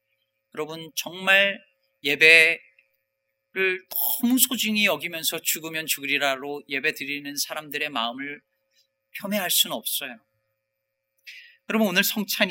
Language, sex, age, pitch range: Korean, male, 40-59, 145-230 Hz